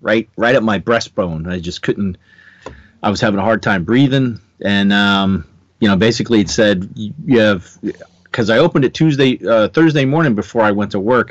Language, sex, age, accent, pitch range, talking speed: English, male, 40-59, American, 105-155 Hz, 195 wpm